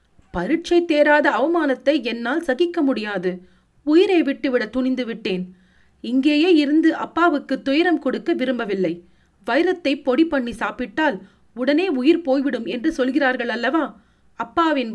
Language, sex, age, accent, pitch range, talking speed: Tamil, female, 40-59, native, 225-315 Hz, 110 wpm